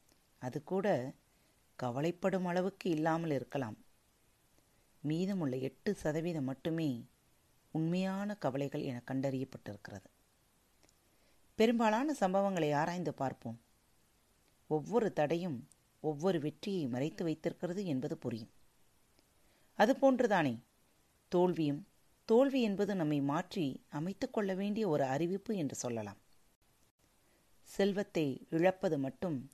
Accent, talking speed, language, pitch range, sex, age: native, 85 wpm, Tamil, 130-185 Hz, female, 30-49